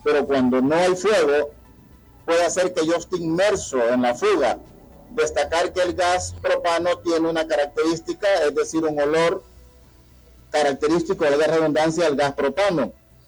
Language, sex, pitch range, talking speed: Spanish, male, 145-180 Hz, 150 wpm